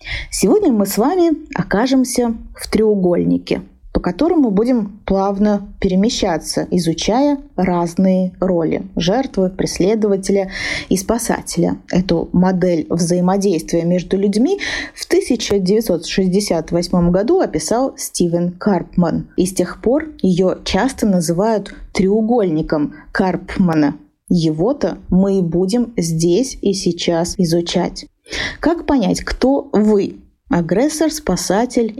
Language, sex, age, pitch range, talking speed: Russian, female, 20-39, 180-245 Hz, 100 wpm